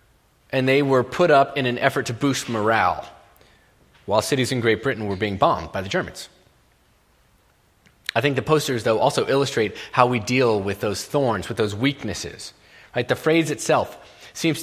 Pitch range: 110-150 Hz